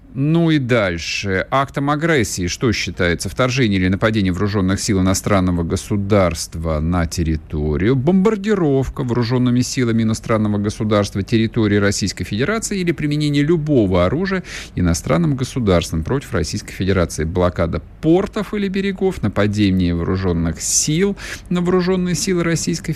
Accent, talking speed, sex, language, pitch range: native, 115 wpm, male, Russian, 95-150 Hz